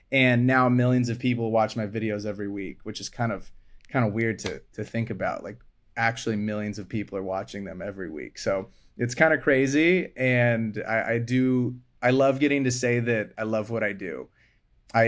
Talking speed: 205 wpm